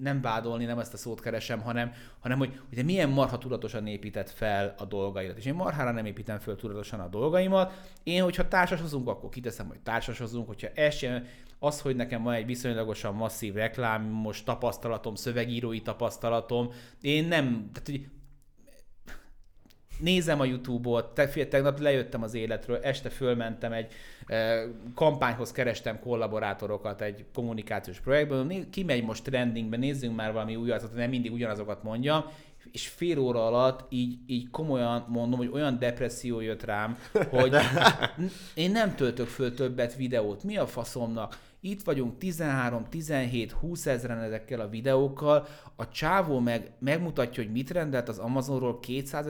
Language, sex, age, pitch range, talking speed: Hungarian, male, 30-49, 115-145 Hz, 145 wpm